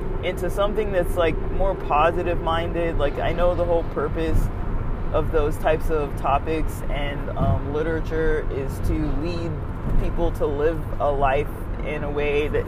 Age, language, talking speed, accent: 20-39, English, 150 wpm, American